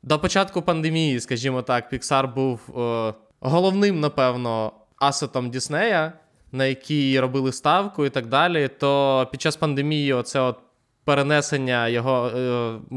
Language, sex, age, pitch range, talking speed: Ukrainian, male, 20-39, 125-150 Hz, 125 wpm